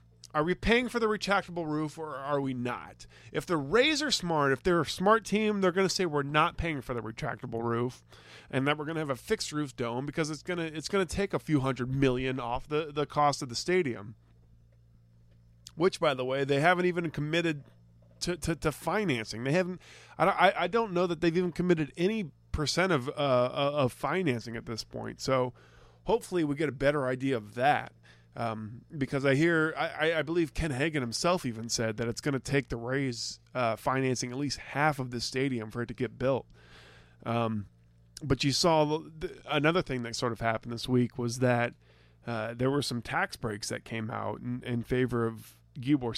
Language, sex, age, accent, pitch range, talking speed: English, male, 20-39, American, 115-160 Hz, 210 wpm